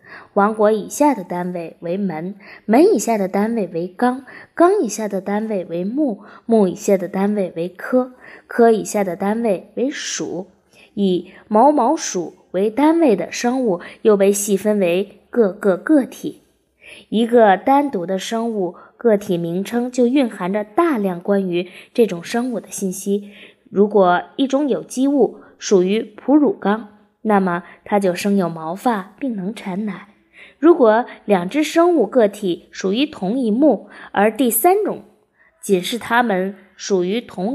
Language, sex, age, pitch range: Chinese, female, 20-39, 190-245 Hz